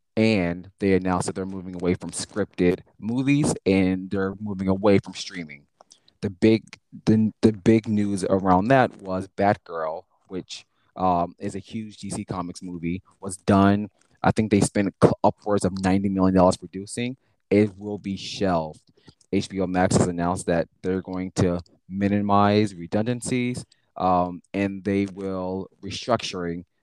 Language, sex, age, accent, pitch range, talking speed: English, male, 20-39, American, 90-105 Hz, 145 wpm